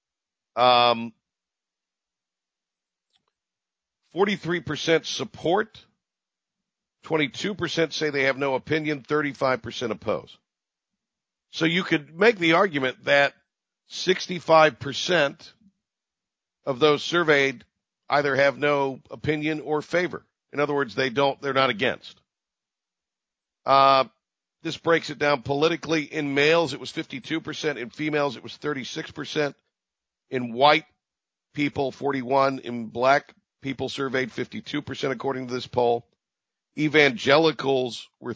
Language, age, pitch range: English, 50-69, 130-155 Hz